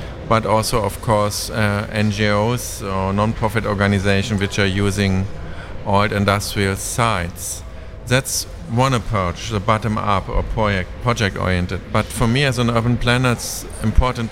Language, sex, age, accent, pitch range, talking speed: Ukrainian, male, 50-69, German, 100-115 Hz, 135 wpm